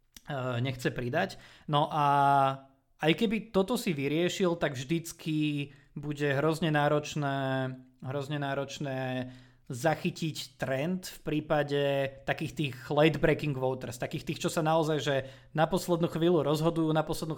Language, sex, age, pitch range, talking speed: Slovak, male, 20-39, 130-155 Hz, 125 wpm